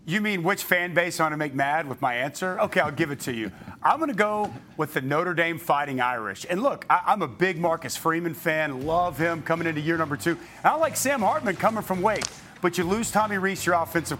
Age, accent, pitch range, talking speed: 40-59, American, 165-195 Hz, 245 wpm